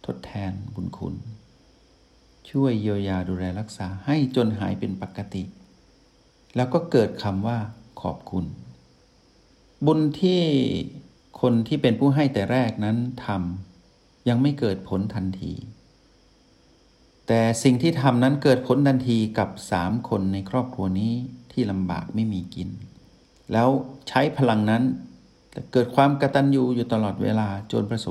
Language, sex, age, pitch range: Thai, male, 60-79, 95-130 Hz